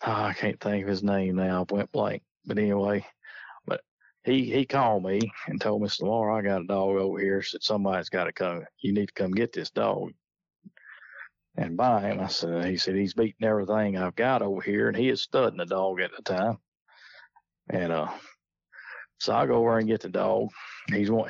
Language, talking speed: English, 205 wpm